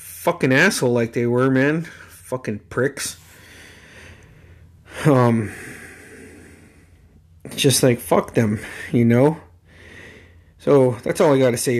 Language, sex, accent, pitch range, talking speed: English, male, American, 85-130 Hz, 105 wpm